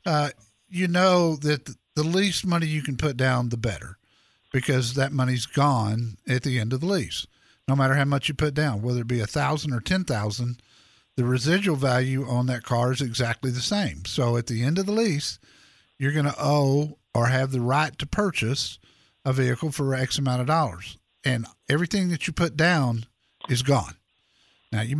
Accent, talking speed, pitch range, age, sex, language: American, 195 wpm, 120-150 Hz, 50-69, male, English